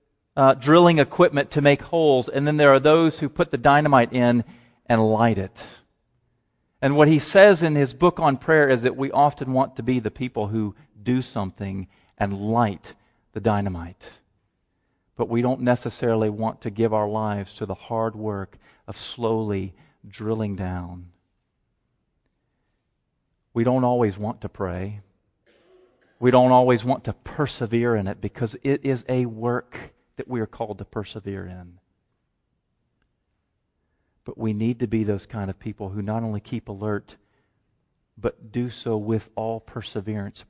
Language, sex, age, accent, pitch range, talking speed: English, male, 40-59, American, 105-135 Hz, 160 wpm